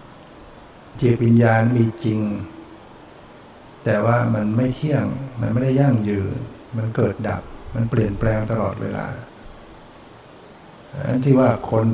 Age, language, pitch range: 60-79, Thai, 105-120 Hz